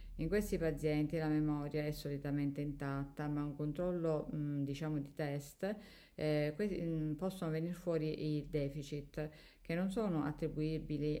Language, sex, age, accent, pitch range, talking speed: Italian, female, 50-69, native, 140-155 Hz, 145 wpm